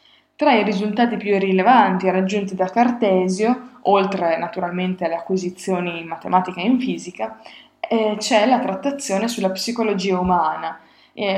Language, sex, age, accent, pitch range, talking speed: Italian, female, 20-39, native, 185-240 Hz, 130 wpm